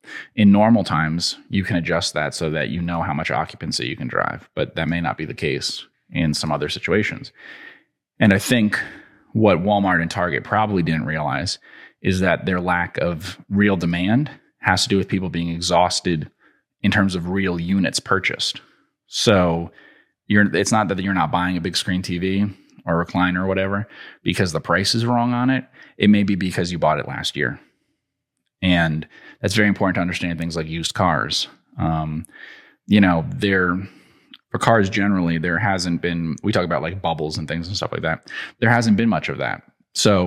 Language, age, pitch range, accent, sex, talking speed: English, 30-49, 85-100 Hz, American, male, 190 wpm